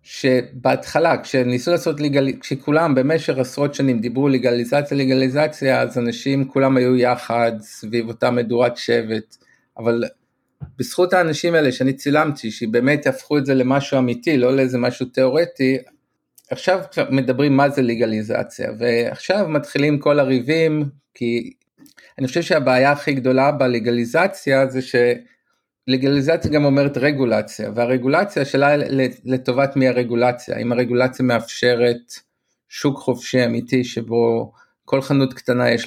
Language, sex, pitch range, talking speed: Hebrew, male, 125-140 Hz, 125 wpm